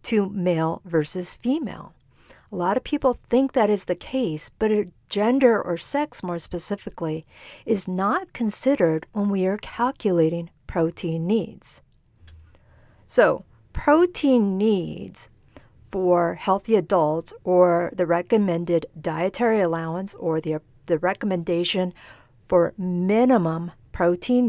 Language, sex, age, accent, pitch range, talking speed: English, female, 50-69, American, 160-220 Hz, 115 wpm